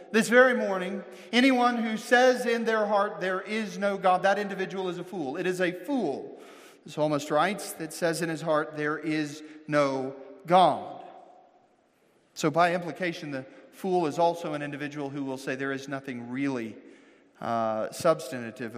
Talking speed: 165 wpm